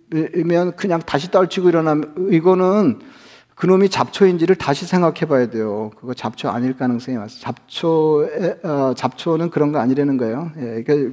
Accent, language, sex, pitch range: native, Korean, male, 135-170 Hz